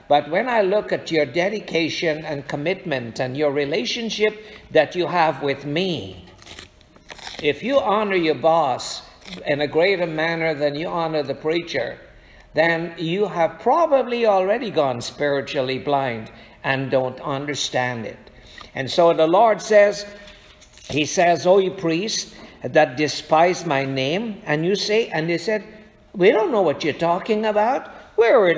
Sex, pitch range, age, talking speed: male, 145-210 Hz, 60-79, 150 wpm